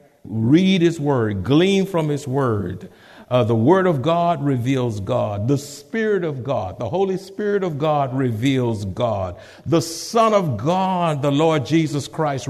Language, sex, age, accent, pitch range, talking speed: English, male, 60-79, American, 120-175 Hz, 160 wpm